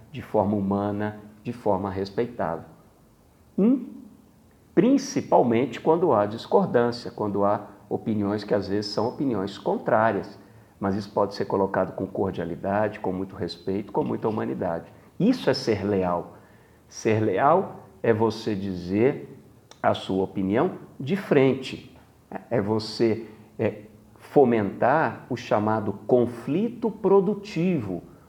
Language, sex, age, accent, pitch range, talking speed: Portuguese, male, 50-69, Brazilian, 105-140 Hz, 110 wpm